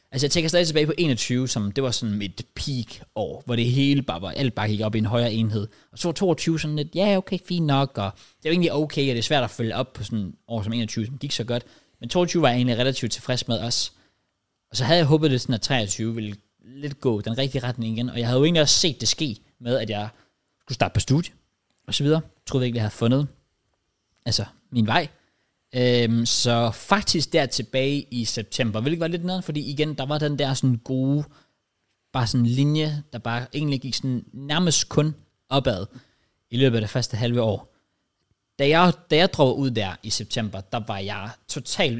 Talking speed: 225 wpm